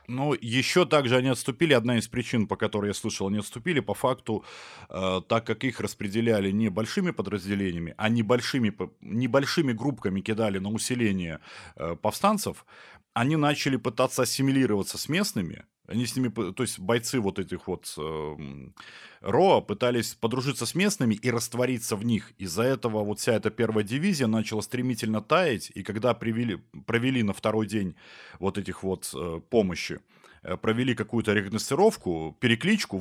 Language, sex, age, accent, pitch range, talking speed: Russian, male, 30-49, native, 105-130 Hz, 150 wpm